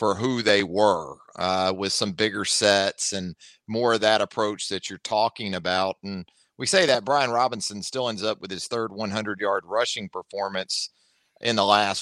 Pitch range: 105-140 Hz